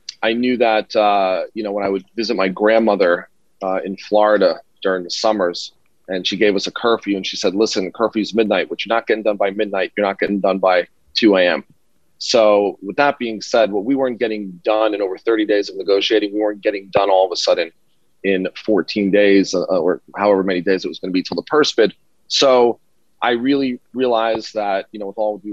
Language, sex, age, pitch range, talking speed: English, male, 30-49, 95-110 Hz, 230 wpm